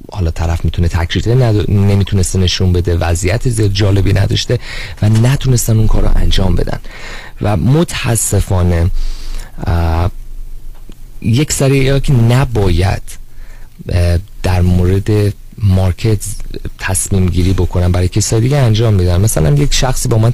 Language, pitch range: Persian, 95-115 Hz